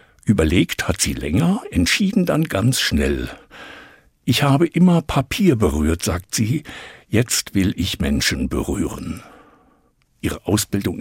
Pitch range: 90-140 Hz